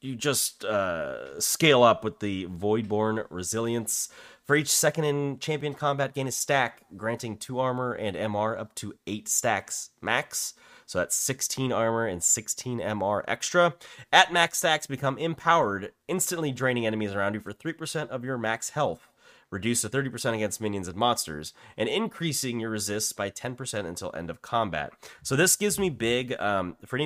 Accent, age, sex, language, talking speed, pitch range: American, 30-49, male, English, 170 wpm, 90-130 Hz